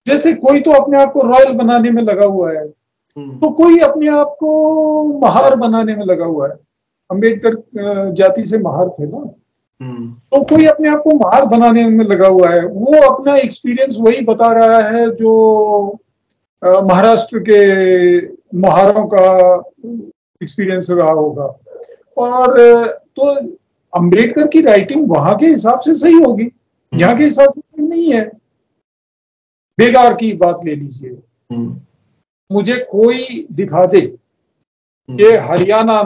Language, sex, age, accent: Hindi, male, 50-69, native